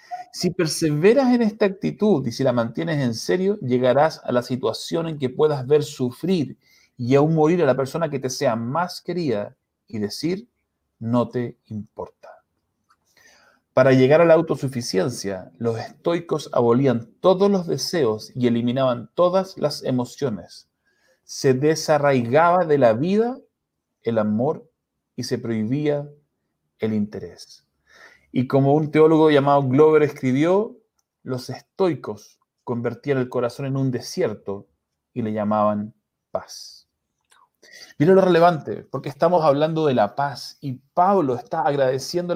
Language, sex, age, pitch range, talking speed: Spanish, male, 40-59, 125-175 Hz, 135 wpm